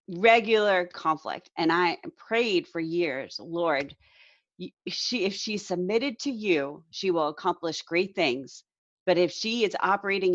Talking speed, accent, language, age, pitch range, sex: 140 wpm, American, English, 30-49, 165-215 Hz, female